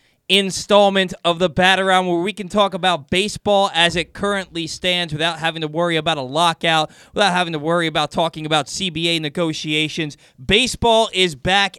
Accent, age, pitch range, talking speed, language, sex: American, 20-39, 165-200 Hz, 175 wpm, English, male